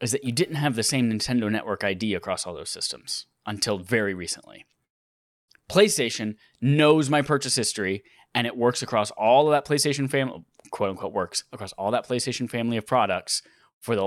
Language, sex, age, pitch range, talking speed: English, male, 10-29, 105-145 Hz, 180 wpm